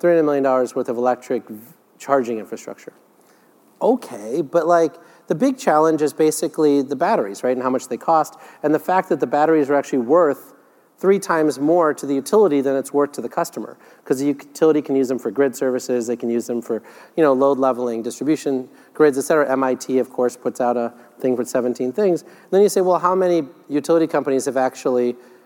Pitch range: 125-160 Hz